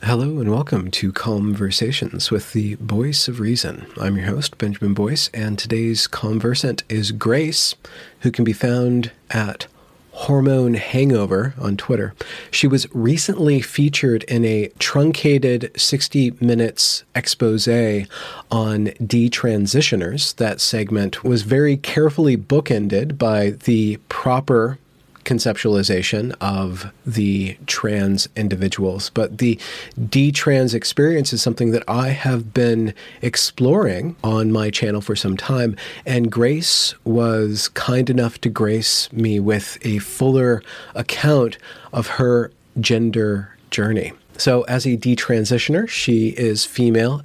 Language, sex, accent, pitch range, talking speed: English, male, American, 105-130 Hz, 120 wpm